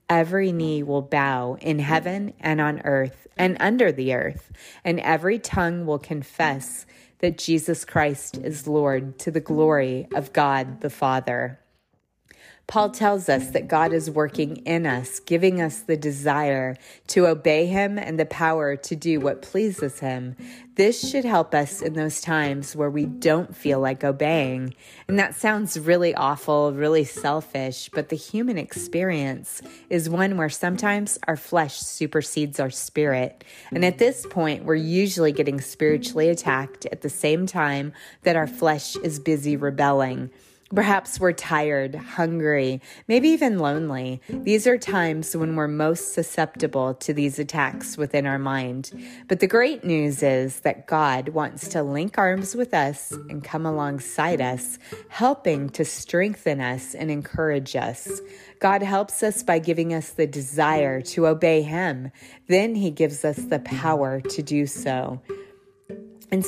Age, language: 30-49, English